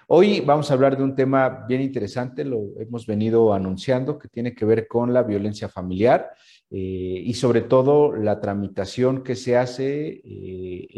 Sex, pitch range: male, 110-145 Hz